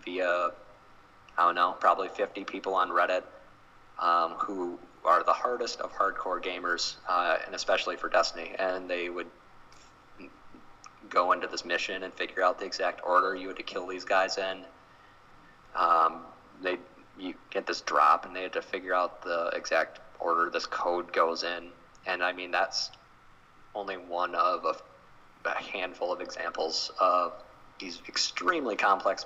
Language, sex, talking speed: English, male, 160 wpm